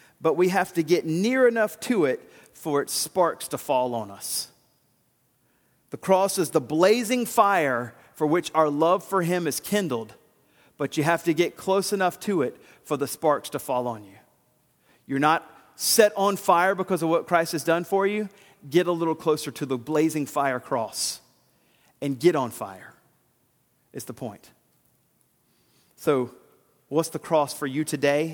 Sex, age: male, 40-59